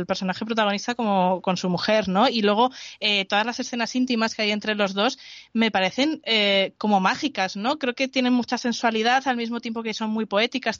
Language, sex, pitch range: Spanish, female, 210-250 Hz